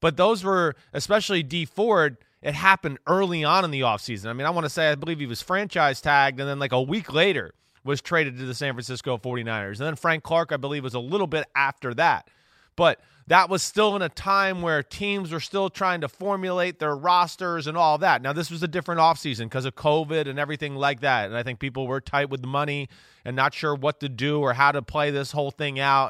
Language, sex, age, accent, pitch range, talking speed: English, male, 30-49, American, 140-185 Hz, 240 wpm